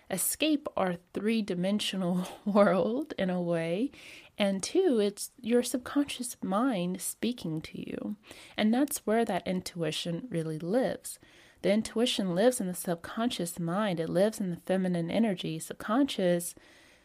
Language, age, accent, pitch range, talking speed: English, 30-49, American, 175-235 Hz, 130 wpm